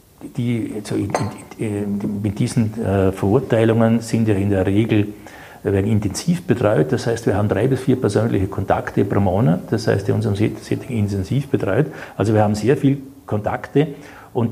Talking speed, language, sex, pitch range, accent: 150 wpm, German, male, 105-130 Hz, Austrian